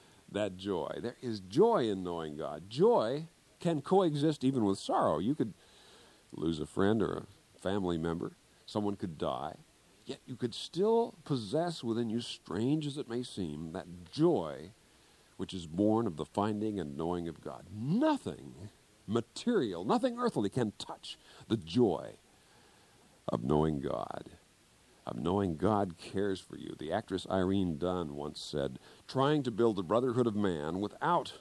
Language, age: English, 50-69